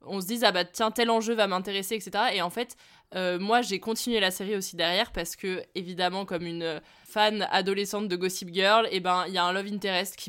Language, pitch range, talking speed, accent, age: French, 180-215 Hz, 240 wpm, French, 20-39